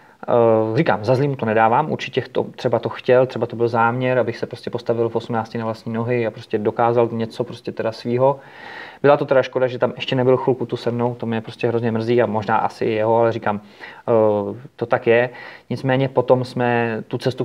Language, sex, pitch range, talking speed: Czech, male, 110-120 Hz, 210 wpm